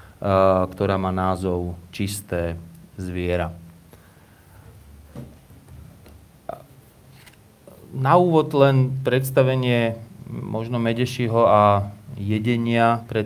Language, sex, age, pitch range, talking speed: Slovak, male, 30-49, 100-120 Hz, 65 wpm